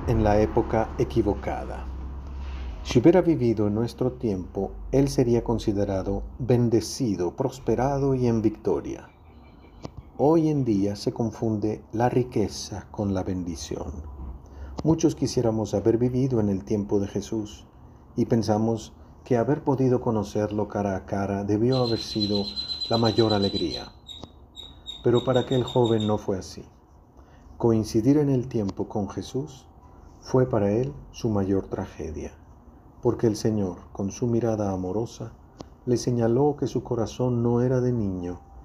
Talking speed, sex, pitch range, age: 135 wpm, male, 95-120 Hz, 40-59